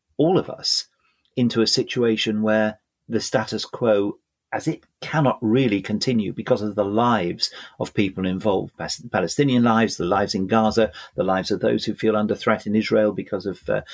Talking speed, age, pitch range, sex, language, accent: 175 wpm, 40-59, 105-125 Hz, male, English, British